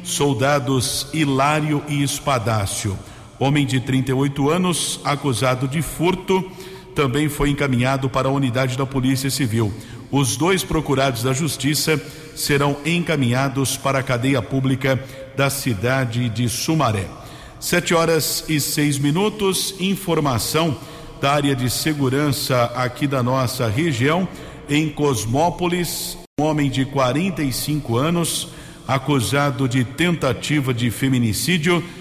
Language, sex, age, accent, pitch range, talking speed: Portuguese, male, 50-69, Brazilian, 130-155 Hz, 115 wpm